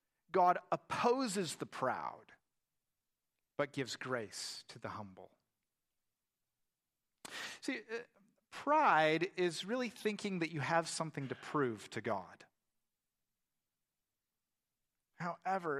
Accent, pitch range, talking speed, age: American, 145-225 Hz, 90 wpm, 50-69